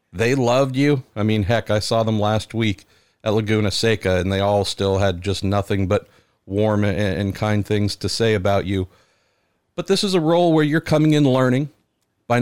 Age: 50-69